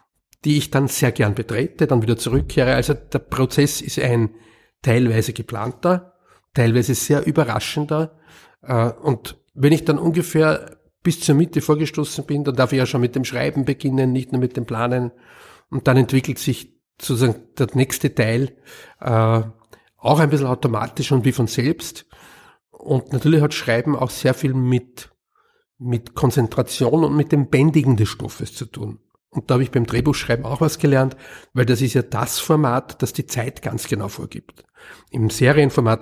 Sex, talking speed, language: male, 165 wpm, German